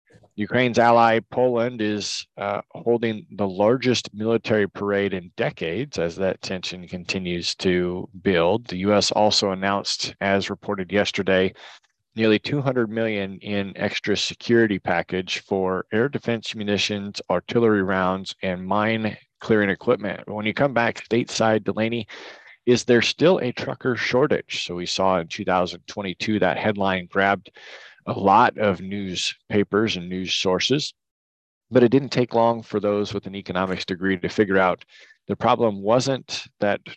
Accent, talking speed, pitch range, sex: American, 140 wpm, 95-115 Hz, male